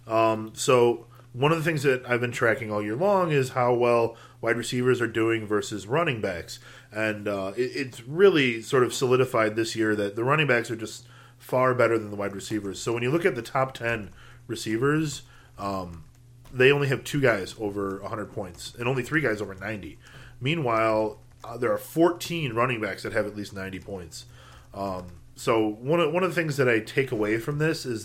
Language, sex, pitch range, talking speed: English, male, 110-130 Hz, 205 wpm